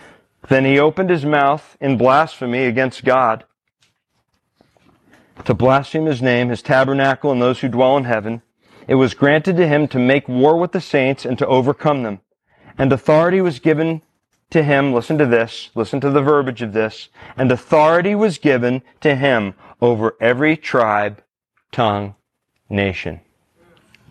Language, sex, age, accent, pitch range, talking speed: English, male, 40-59, American, 110-140 Hz, 155 wpm